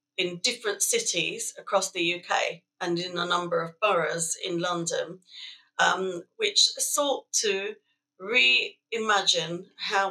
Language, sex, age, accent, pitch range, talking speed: English, female, 40-59, British, 170-215 Hz, 120 wpm